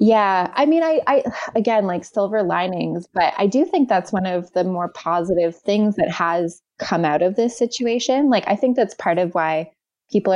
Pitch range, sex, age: 170-210 Hz, female, 20-39